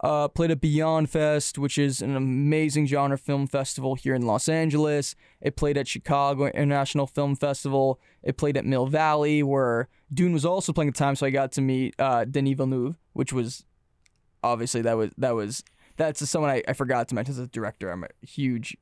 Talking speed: 205 wpm